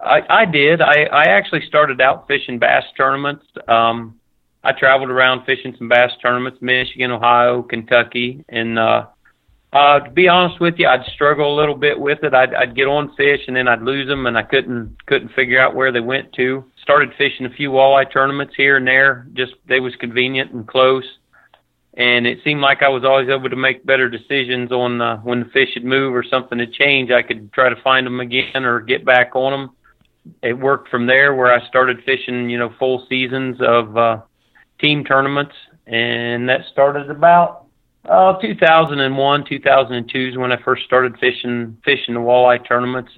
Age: 40-59